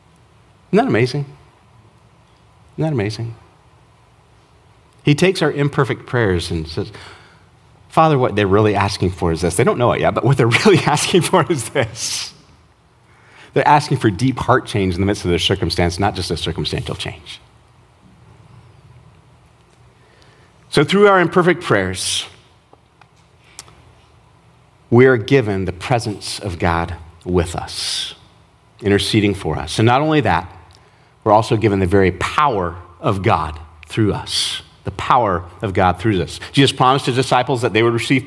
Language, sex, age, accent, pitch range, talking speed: English, male, 40-59, American, 100-145 Hz, 150 wpm